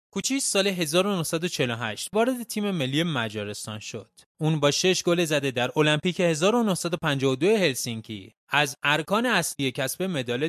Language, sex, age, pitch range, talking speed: Persian, male, 20-39, 125-185 Hz, 125 wpm